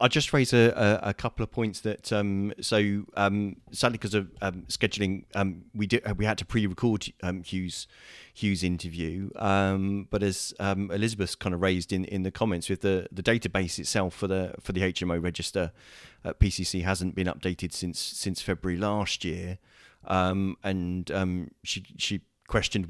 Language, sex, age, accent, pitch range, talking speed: English, male, 30-49, British, 90-105 Hz, 175 wpm